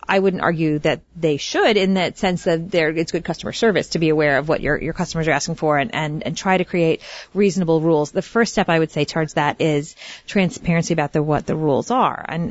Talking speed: 240 wpm